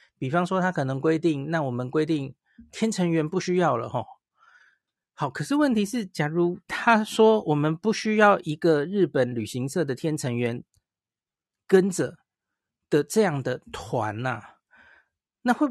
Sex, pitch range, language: male, 135-180 Hz, Chinese